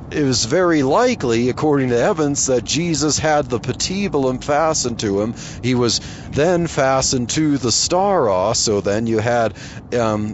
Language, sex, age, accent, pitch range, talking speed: English, male, 40-59, American, 110-150 Hz, 155 wpm